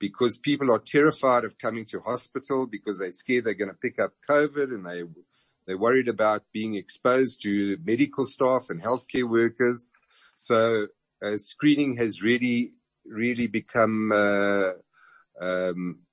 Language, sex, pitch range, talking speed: English, male, 105-135 Hz, 150 wpm